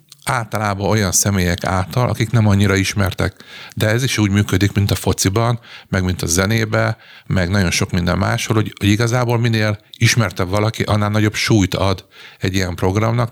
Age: 50-69